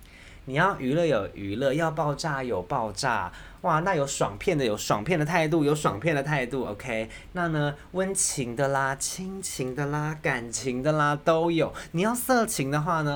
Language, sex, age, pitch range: Chinese, male, 20-39, 105-165 Hz